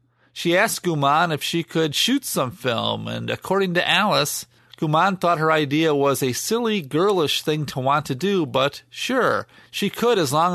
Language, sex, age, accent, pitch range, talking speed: English, male, 40-59, American, 140-195 Hz, 180 wpm